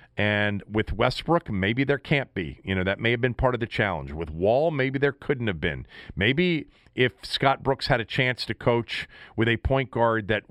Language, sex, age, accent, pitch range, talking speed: English, male, 40-59, American, 95-125 Hz, 215 wpm